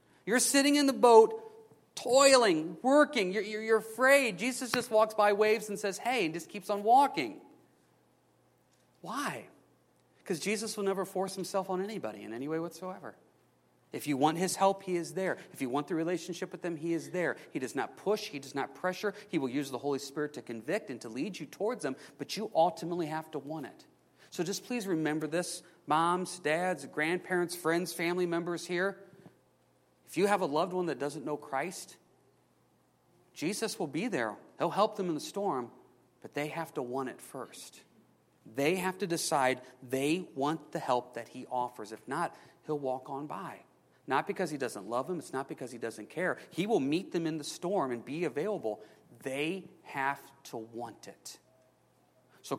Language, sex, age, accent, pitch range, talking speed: English, male, 40-59, American, 145-200 Hz, 190 wpm